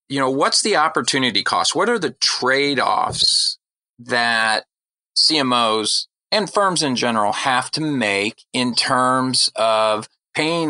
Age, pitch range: 40-59, 110-135 Hz